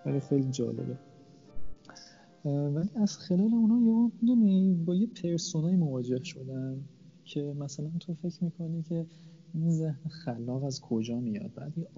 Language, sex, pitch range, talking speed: Persian, male, 125-150 Hz, 140 wpm